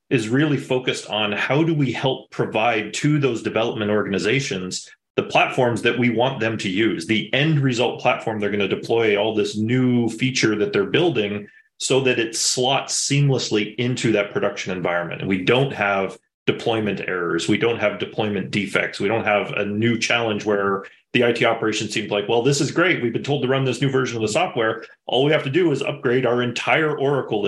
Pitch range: 105-130 Hz